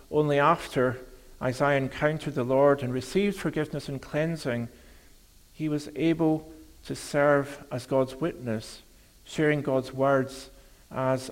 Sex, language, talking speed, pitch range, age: male, English, 120 wpm, 130-160 Hz, 50-69